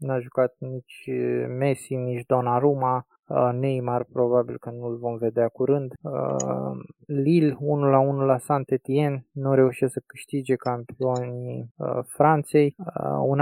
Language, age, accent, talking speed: Romanian, 20-39, native, 110 wpm